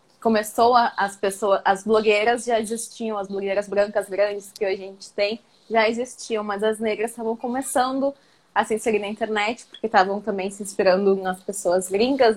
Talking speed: 175 wpm